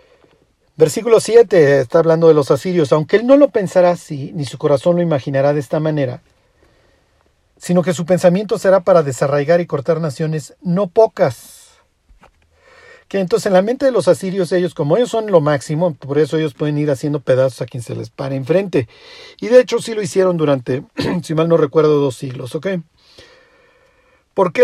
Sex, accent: male, Mexican